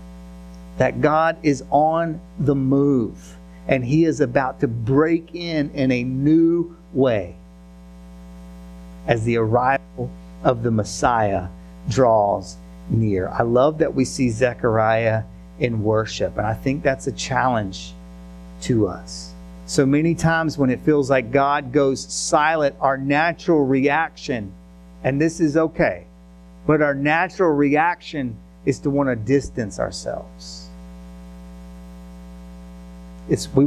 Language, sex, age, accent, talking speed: English, male, 50-69, American, 125 wpm